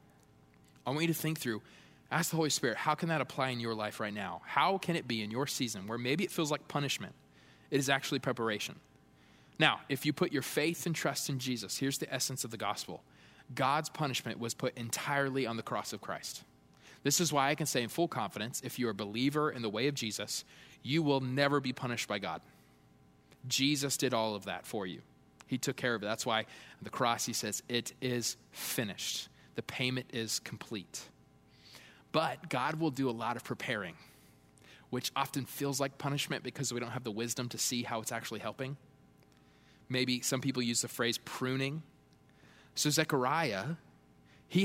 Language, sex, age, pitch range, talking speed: English, male, 20-39, 110-145 Hz, 200 wpm